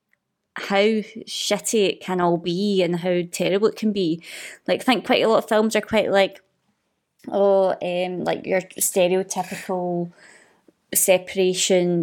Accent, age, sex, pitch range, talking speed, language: British, 20-39, female, 175-215 Hz, 145 wpm, English